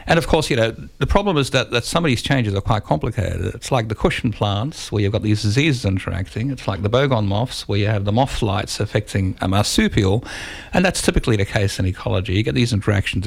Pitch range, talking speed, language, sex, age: 100-120 Hz, 240 wpm, English, male, 50-69